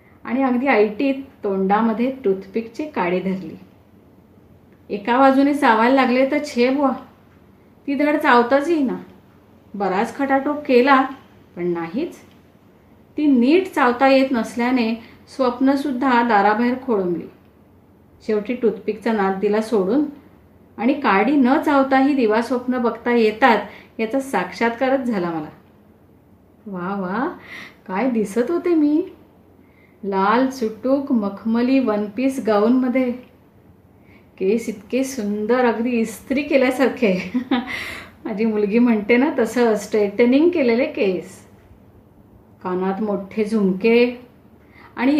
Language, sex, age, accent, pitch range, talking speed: Marathi, female, 30-49, native, 195-265 Hz, 110 wpm